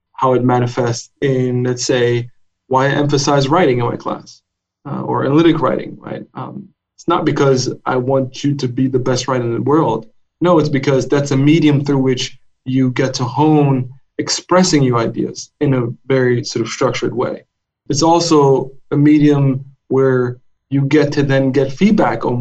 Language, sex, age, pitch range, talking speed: English, male, 20-39, 125-145 Hz, 180 wpm